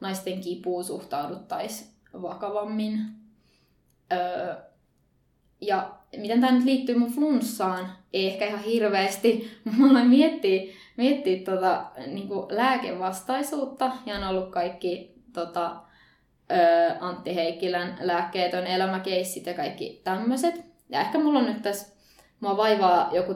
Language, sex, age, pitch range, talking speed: Finnish, female, 20-39, 180-225 Hz, 115 wpm